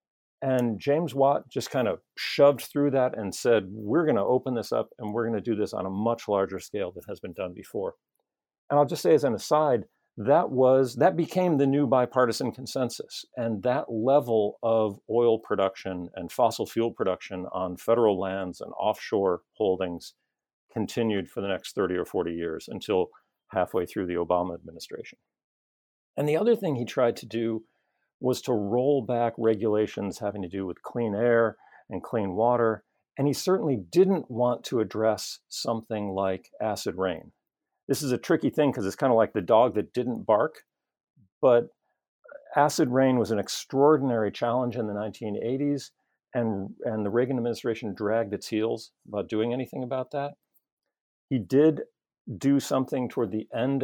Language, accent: English, American